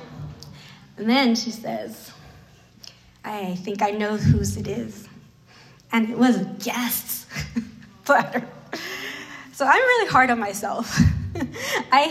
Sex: female